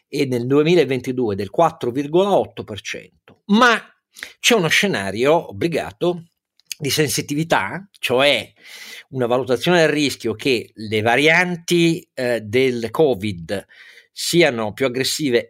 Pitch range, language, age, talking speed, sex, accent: 110-160 Hz, Italian, 50-69, 100 wpm, male, native